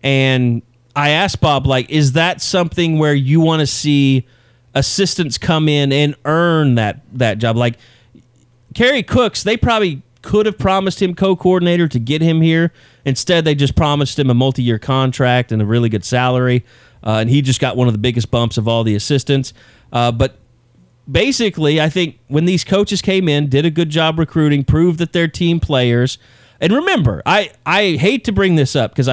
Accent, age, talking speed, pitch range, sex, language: American, 30-49, 190 wpm, 120-160 Hz, male, English